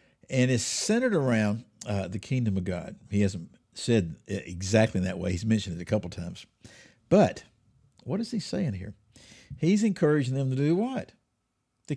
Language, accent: English, American